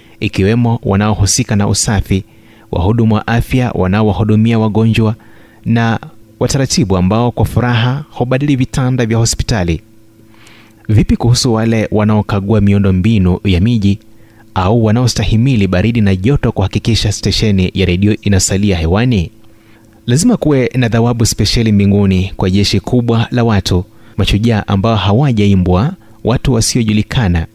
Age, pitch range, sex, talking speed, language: 30-49, 100-115 Hz, male, 115 wpm, Swahili